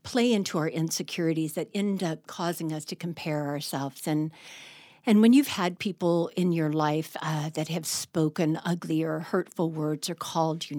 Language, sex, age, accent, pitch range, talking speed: English, female, 50-69, American, 160-195 Hz, 180 wpm